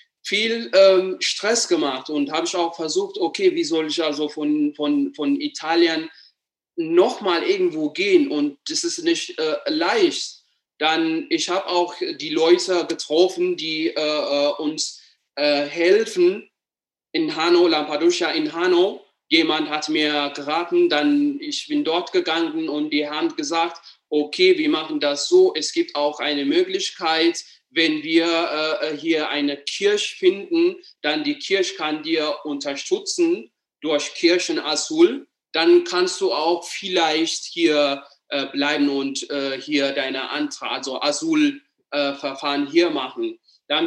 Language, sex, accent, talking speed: German, male, German, 140 wpm